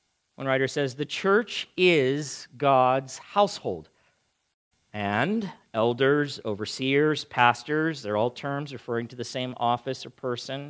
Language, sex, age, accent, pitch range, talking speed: English, male, 50-69, American, 110-170 Hz, 125 wpm